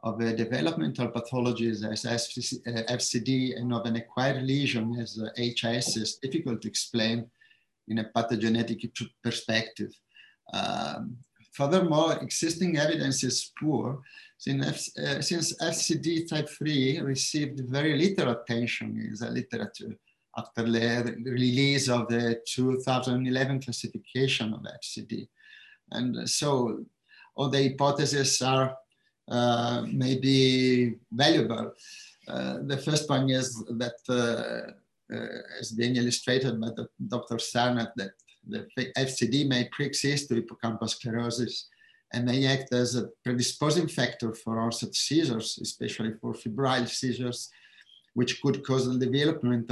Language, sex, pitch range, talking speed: English, male, 115-135 Hz, 120 wpm